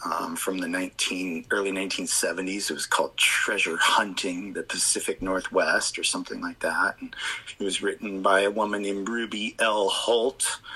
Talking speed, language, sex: 160 wpm, English, male